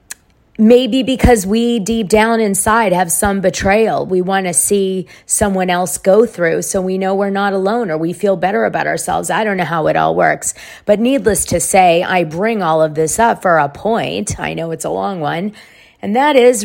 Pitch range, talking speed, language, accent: 170-230 Hz, 210 wpm, English, American